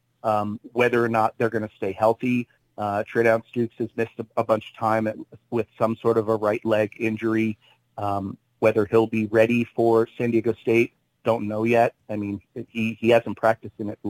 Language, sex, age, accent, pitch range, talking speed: English, male, 30-49, American, 110-120 Hz, 200 wpm